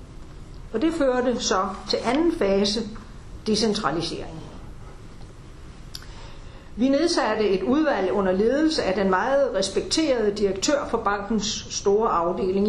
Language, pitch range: Danish, 190-255 Hz